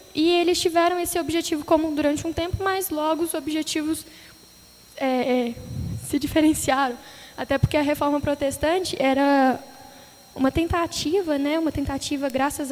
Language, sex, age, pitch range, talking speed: Portuguese, female, 10-29, 265-335 Hz, 125 wpm